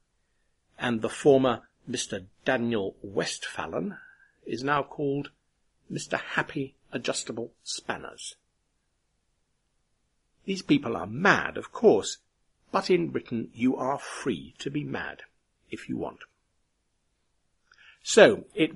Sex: male